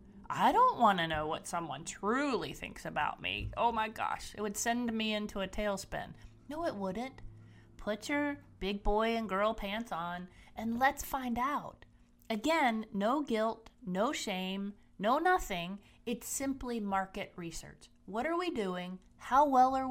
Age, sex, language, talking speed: 30-49, female, English, 165 wpm